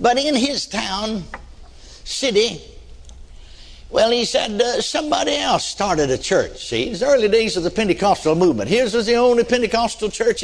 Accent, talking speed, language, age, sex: American, 170 wpm, English, 60-79, male